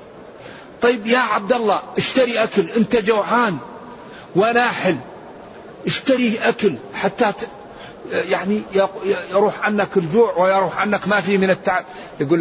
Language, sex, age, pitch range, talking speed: Arabic, male, 50-69, 185-225 Hz, 115 wpm